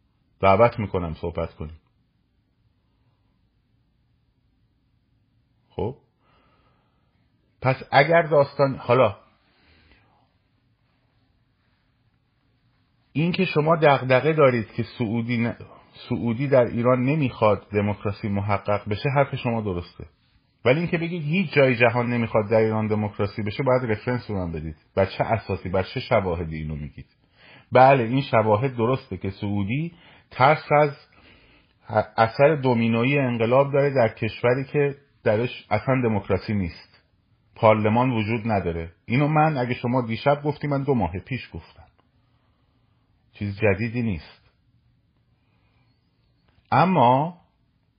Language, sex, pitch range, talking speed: Persian, male, 105-130 Hz, 110 wpm